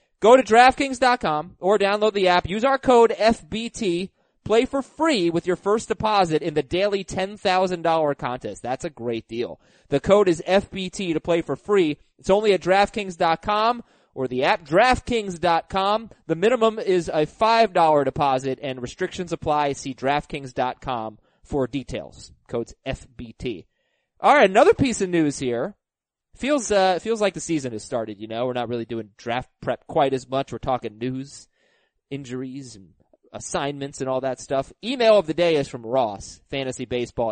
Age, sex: 30-49, male